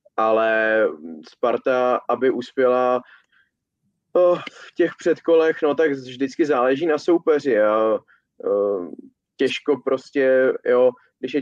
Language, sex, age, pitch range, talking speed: Czech, male, 20-39, 115-135 Hz, 95 wpm